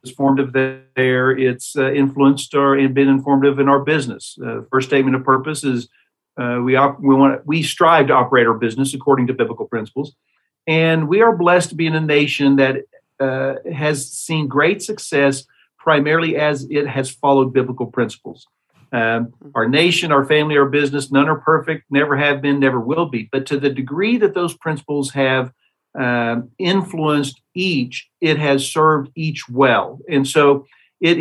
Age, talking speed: 50-69, 175 wpm